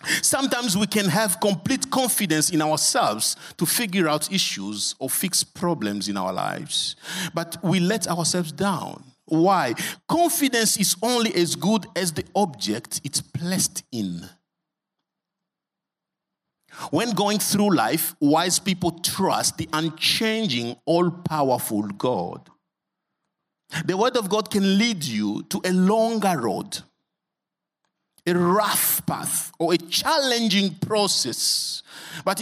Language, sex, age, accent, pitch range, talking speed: English, male, 50-69, Nigerian, 160-215 Hz, 120 wpm